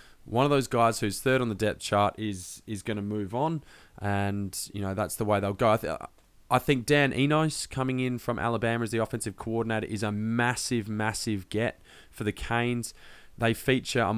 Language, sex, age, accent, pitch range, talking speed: English, male, 20-39, Australian, 105-125 Hz, 205 wpm